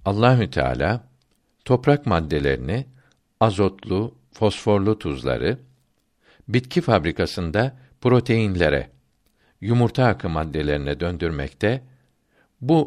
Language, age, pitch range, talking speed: Turkish, 60-79, 85-125 Hz, 65 wpm